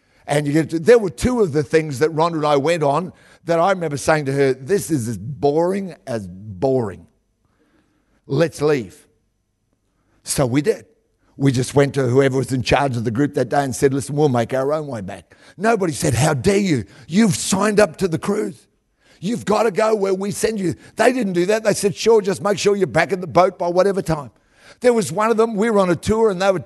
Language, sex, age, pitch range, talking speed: English, male, 50-69, 140-200 Hz, 235 wpm